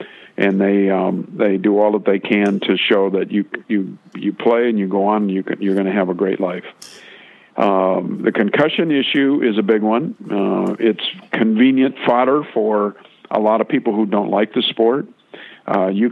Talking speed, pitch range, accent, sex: 200 wpm, 100-115 Hz, American, male